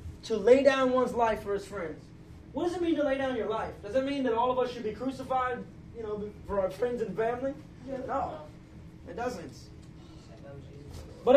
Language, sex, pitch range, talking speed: English, male, 210-270 Hz, 200 wpm